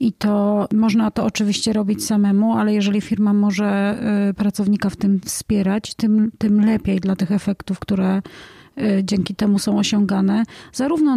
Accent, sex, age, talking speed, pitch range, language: native, female, 30-49, 145 wpm, 210-245 Hz, Polish